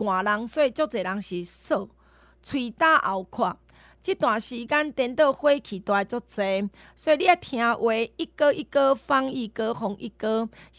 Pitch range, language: 210-285 Hz, Chinese